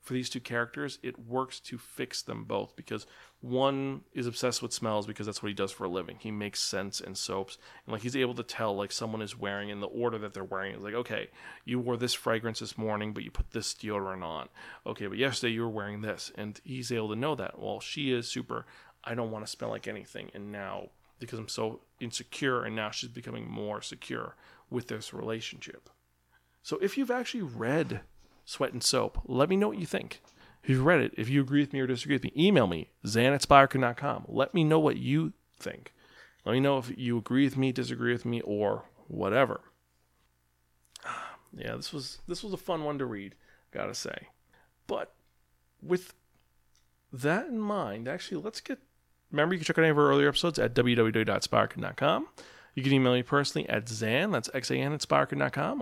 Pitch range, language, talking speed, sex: 105-135 Hz, English, 205 wpm, male